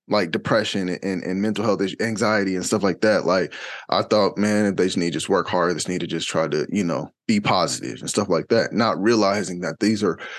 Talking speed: 235 wpm